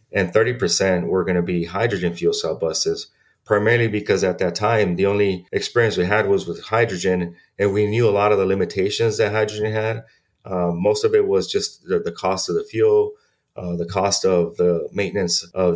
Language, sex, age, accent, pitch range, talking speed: English, male, 30-49, American, 90-135 Hz, 200 wpm